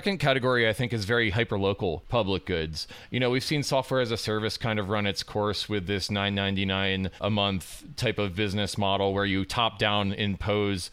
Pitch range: 100-115 Hz